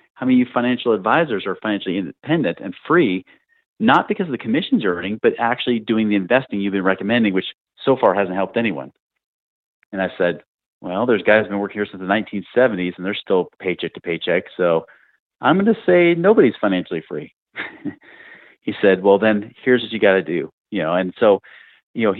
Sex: male